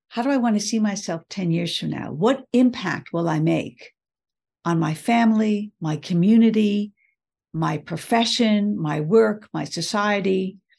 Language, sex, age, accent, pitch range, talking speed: English, female, 60-79, American, 175-225 Hz, 145 wpm